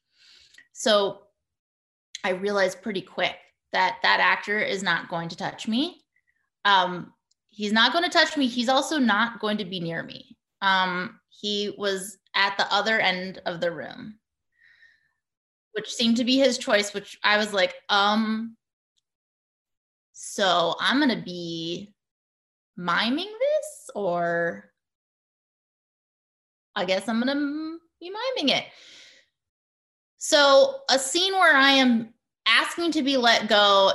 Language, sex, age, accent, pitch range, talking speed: English, female, 20-39, American, 190-270 Hz, 135 wpm